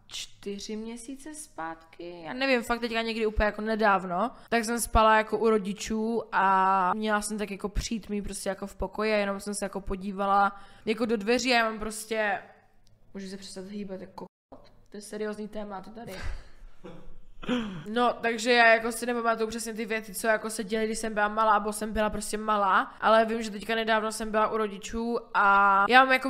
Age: 20-39